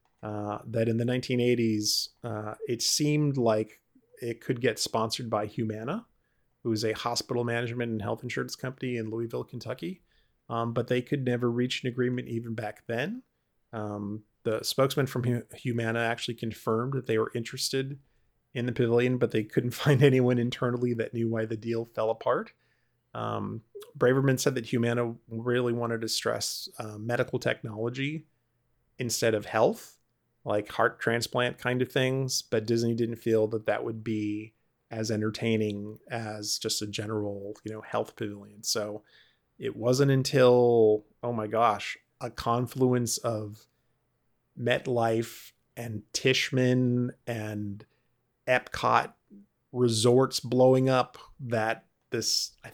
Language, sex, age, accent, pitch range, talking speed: English, male, 30-49, American, 110-125 Hz, 140 wpm